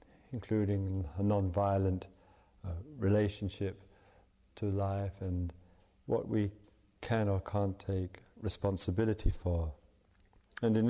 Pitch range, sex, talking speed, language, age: 95-120 Hz, male, 95 wpm, English, 50-69